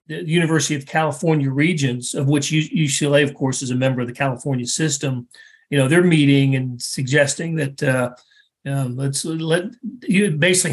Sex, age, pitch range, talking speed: male, 40-59, 135-160 Hz, 170 wpm